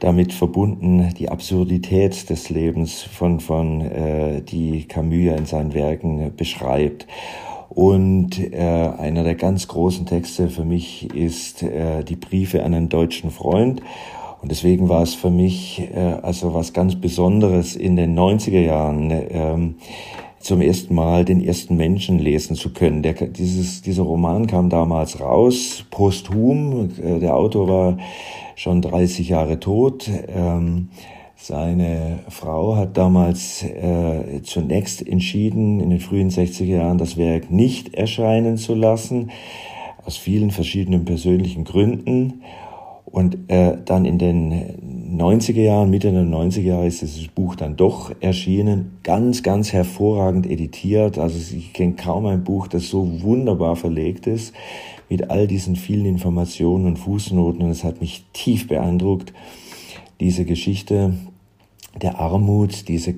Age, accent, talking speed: 50-69, German, 135 wpm